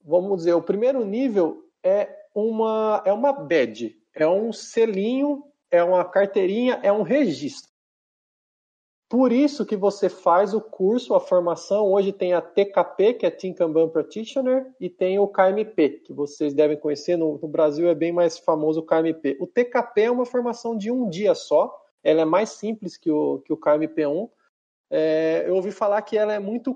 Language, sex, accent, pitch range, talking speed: Portuguese, male, Brazilian, 170-235 Hz, 180 wpm